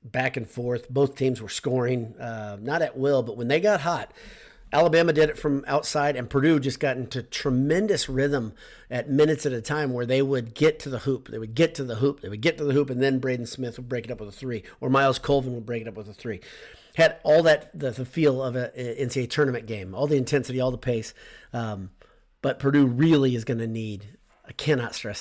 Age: 40-59